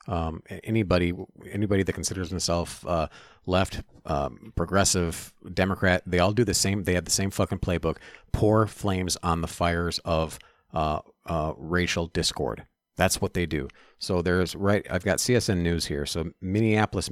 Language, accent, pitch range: English, American, 85-105 Hz